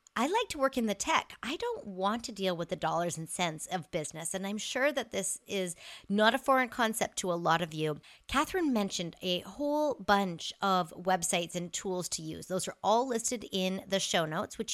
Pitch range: 180-240 Hz